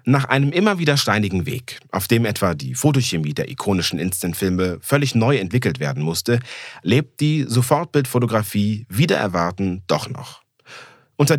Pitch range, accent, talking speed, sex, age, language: 95-135 Hz, German, 140 wpm, male, 40-59, German